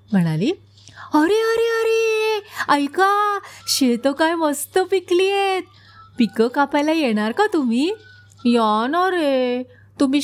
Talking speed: 110 wpm